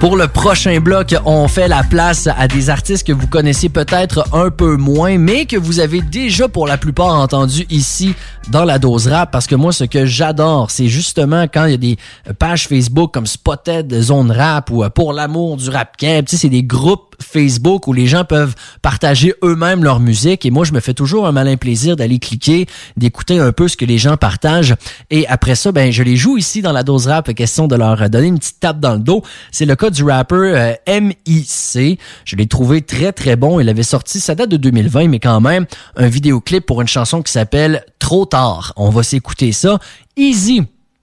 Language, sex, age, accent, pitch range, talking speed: English, male, 30-49, Canadian, 125-170 Hz, 220 wpm